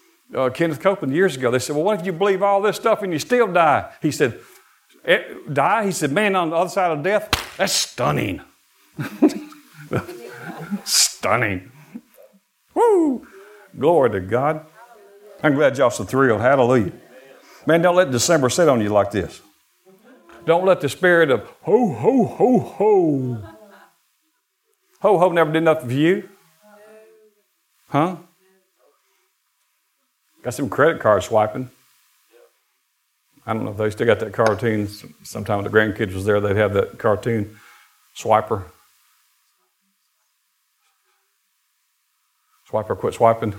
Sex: male